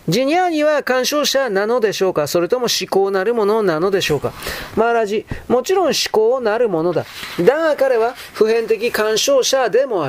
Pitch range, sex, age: 235-295 Hz, male, 40-59